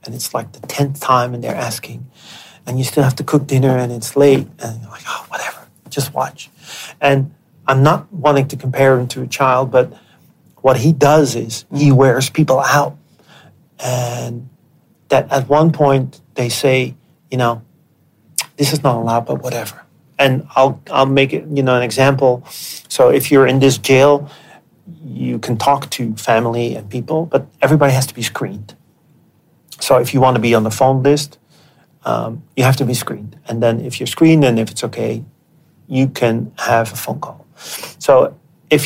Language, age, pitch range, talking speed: English, 40-59, 120-140 Hz, 185 wpm